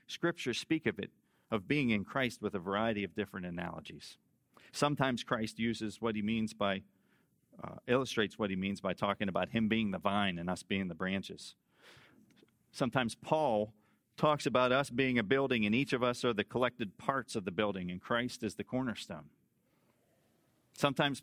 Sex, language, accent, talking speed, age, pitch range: male, English, American, 180 wpm, 40-59, 105-140 Hz